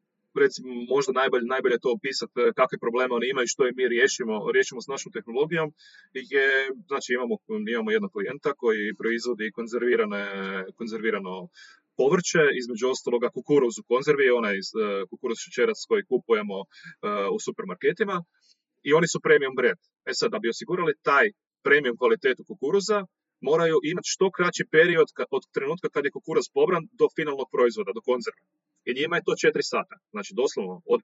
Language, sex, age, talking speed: Croatian, male, 30-49, 155 wpm